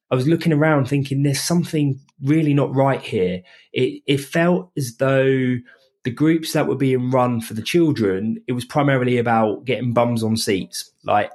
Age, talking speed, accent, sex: 20-39, 180 wpm, British, male